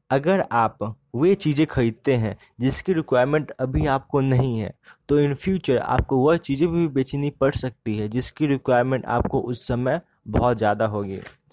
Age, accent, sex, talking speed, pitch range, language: 20-39, native, male, 160 wpm, 125-155 Hz, Hindi